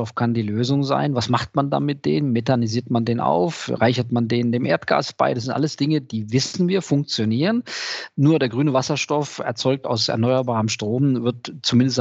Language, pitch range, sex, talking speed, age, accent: German, 115-140 Hz, male, 190 wpm, 40-59, German